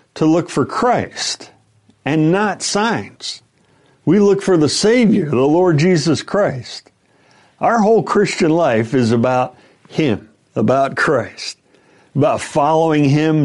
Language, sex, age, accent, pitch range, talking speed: English, male, 60-79, American, 130-185 Hz, 125 wpm